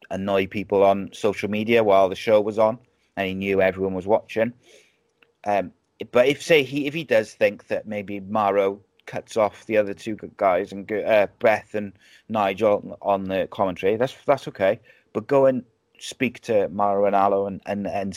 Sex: male